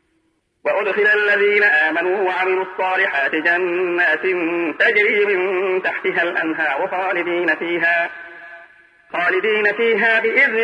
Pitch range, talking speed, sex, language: 175-225 Hz, 85 wpm, male, Arabic